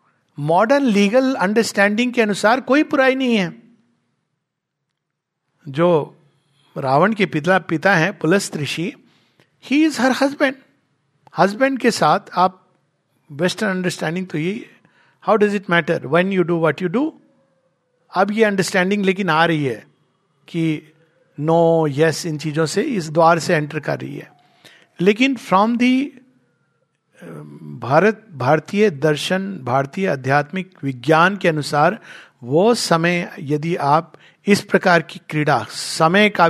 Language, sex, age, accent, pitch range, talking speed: Hindi, male, 50-69, native, 155-205 Hz, 135 wpm